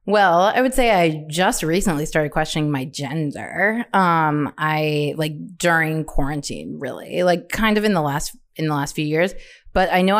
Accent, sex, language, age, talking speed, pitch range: American, female, English, 30-49, 180 wpm, 150-190 Hz